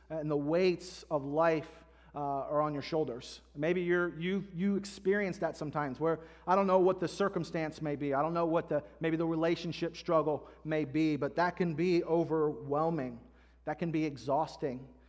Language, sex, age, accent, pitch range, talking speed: English, male, 30-49, American, 150-190 Hz, 185 wpm